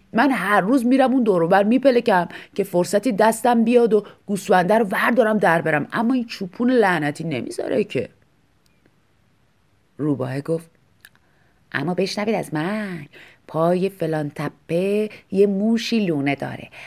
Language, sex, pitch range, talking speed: Persian, female, 145-220 Hz, 130 wpm